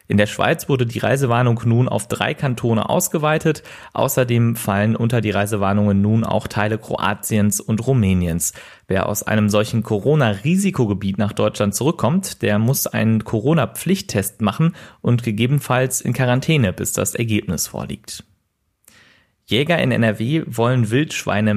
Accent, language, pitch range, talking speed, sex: German, German, 105-130 Hz, 135 wpm, male